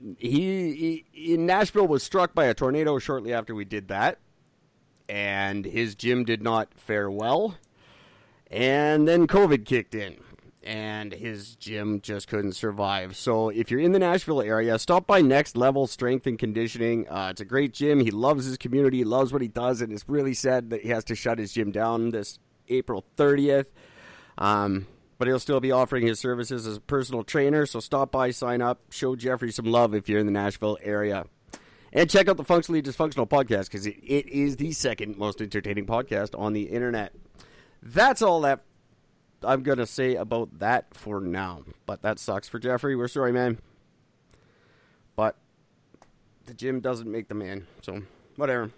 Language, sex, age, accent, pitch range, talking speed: English, male, 30-49, American, 110-140 Hz, 180 wpm